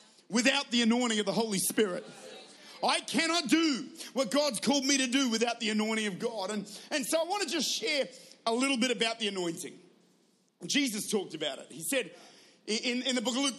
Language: English